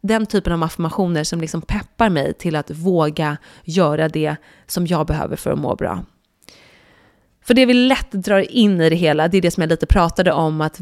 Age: 30-49